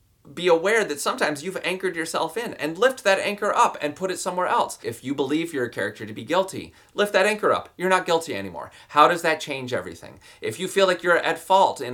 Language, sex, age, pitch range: English, male, 30-49, 115-160 Hz